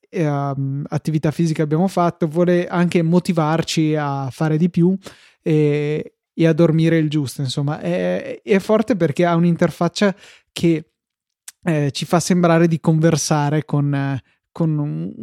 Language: Italian